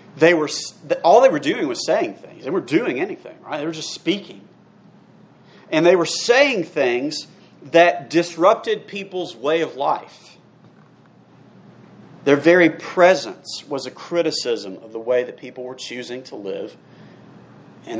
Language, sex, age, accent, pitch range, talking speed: English, male, 40-59, American, 135-175 Hz, 150 wpm